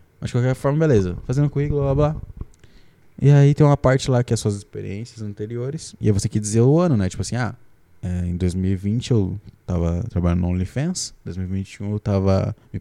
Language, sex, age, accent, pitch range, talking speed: Portuguese, male, 20-39, Brazilian, 105-135 Hz, 200 wpm